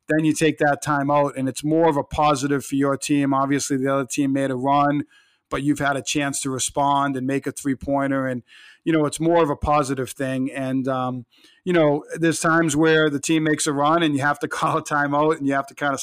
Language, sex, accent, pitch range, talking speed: English, male, American, 140-150 Hz, 255 wpm